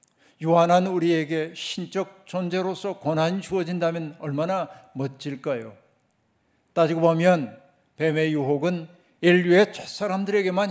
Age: 60-79